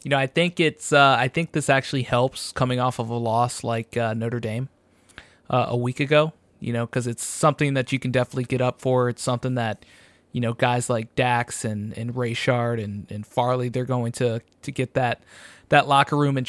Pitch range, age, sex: 120-140 Hz, 20-39, male